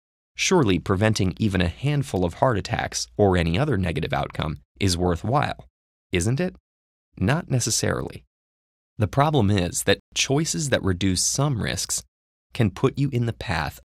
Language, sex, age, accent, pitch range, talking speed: English, male, 20-39, American, 85-125 Hz, 145 wpm